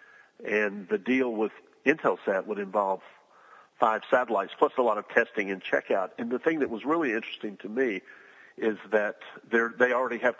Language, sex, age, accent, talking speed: English, male, 50-69, American, 175 wpm